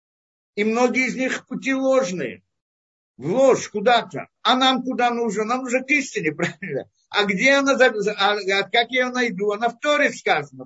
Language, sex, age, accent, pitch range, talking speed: Russian, male, 50-69, native, 170-245 Hz, 165 wpm